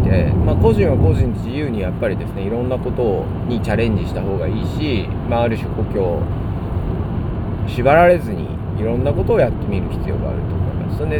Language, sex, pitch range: Japanese, male, 90-110 Hz